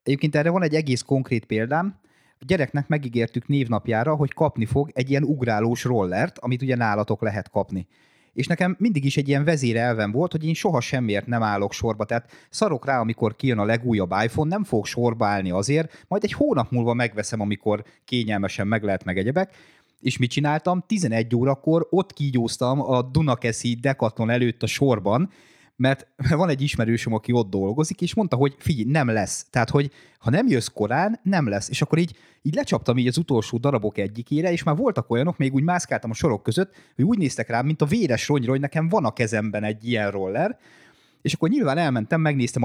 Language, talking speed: Hungarian, 195 wpm